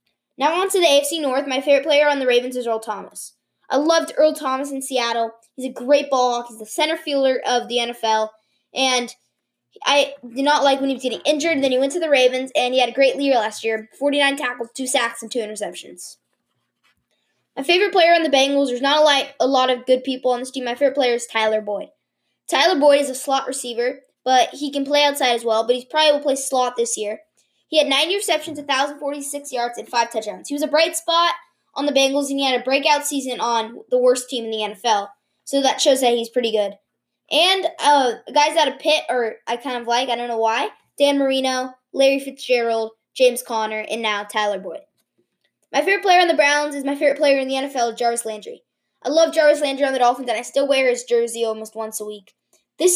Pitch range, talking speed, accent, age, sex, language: 235-290 Hz, 230 wpm, American, 10-29, female, English